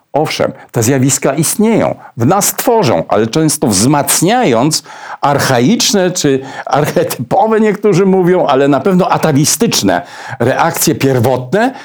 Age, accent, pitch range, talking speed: 60-79, native, 135-215 Hz, 105 wpm